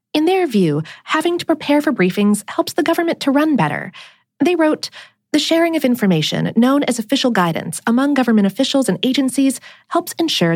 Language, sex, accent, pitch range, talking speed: English, female, American, 190-300 Hz, 175 wpm